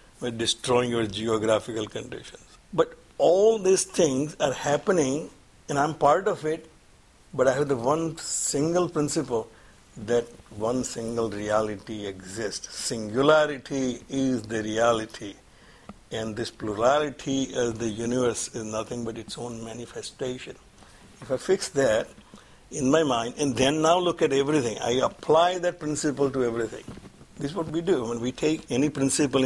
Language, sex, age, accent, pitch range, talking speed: English, male, 60-79, Indian, 115-145 Hz, 150 wpm